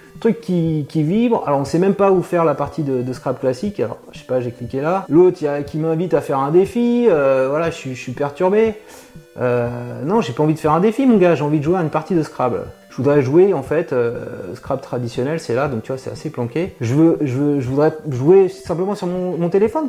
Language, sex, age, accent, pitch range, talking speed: French, male, 30-49, French, 135-185 Hz, 260 wpm